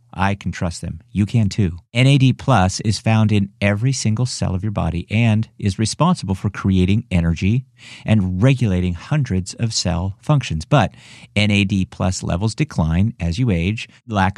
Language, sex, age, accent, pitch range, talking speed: English, male, 50-69, American, 95-120 Hz, 165 wpm